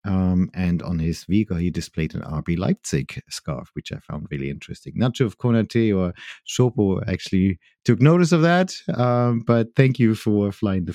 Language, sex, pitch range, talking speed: English, male, 95-135 Hz, 180 wpm